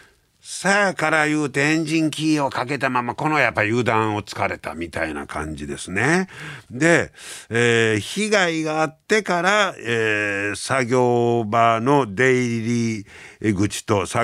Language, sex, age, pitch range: Japanese, male, 60-79, 105-155 Hz